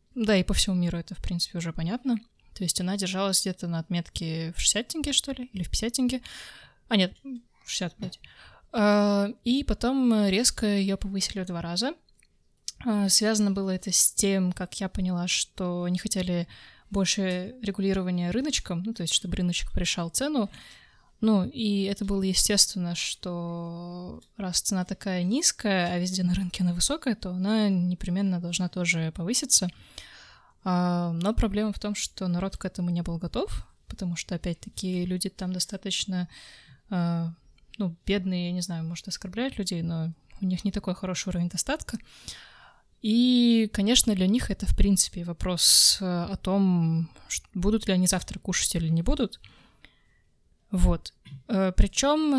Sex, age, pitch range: female, 20-39, 180-210 Hz